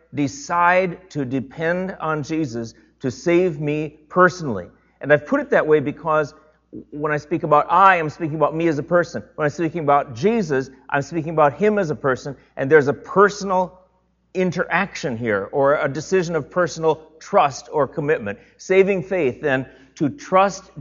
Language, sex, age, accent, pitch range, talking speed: English, male, 40-59, American, 130-175 Hz, 175 wpm